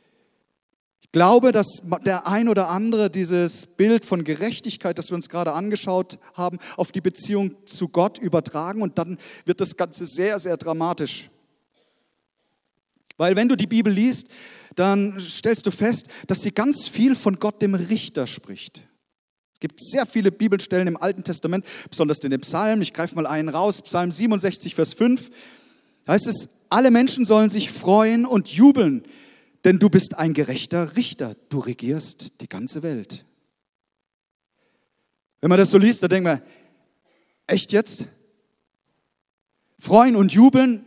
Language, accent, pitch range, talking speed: German, German, 175-220 Hz, 155 wpm